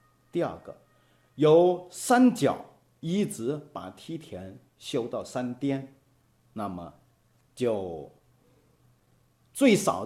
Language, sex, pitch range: Chinese, male, 110-160 Hz